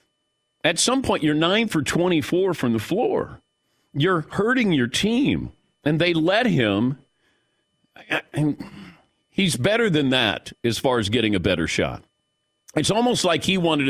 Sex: male